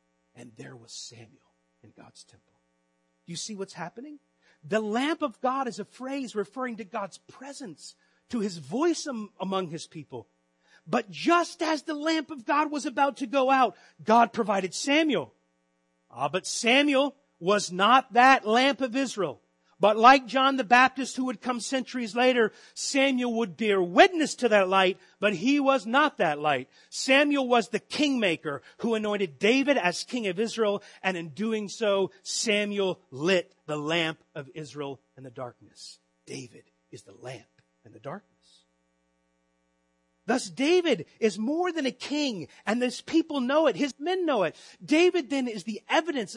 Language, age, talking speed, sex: English, 40-59, 165 wpm, male